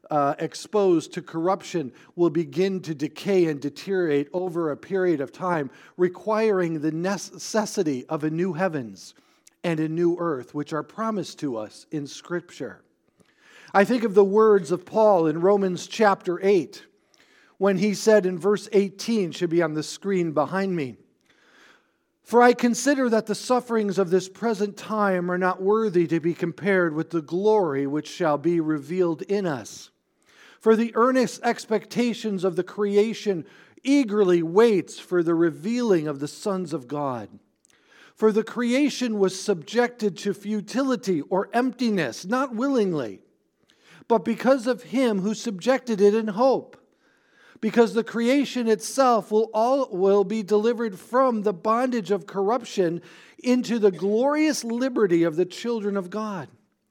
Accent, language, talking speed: American, English, 150 wpm